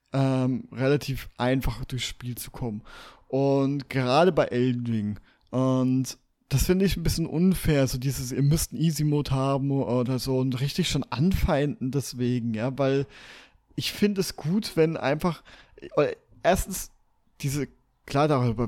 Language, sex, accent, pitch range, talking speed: German, male, German, 130-165 Hz, 145 wpm